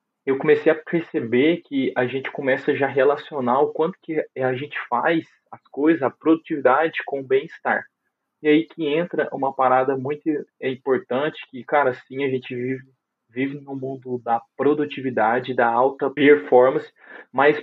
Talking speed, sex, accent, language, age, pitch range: 160 wpm, male, Brazilian, Portuguese, 20-39, 125-150 Hz